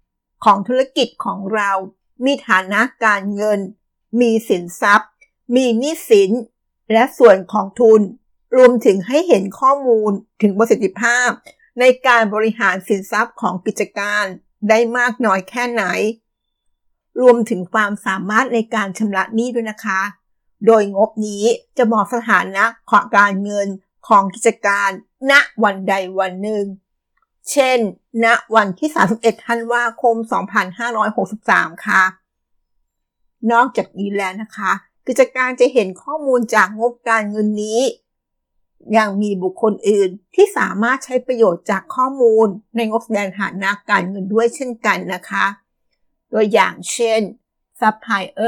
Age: 60-79